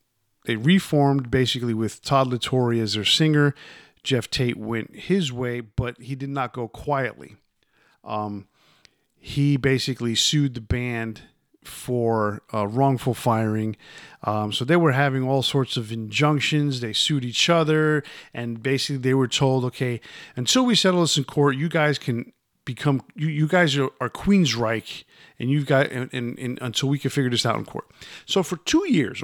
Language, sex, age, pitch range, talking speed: English, male, 50-69, 115-145 Hz, 170 wpm